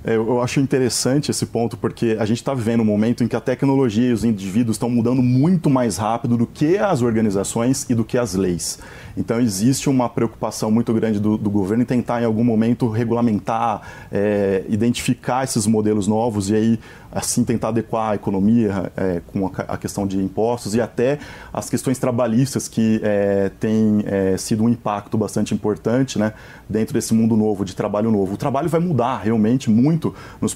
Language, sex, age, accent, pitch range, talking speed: Portuguese, male, 20-39, Brazilian, 110-125 Hz, 190 wpm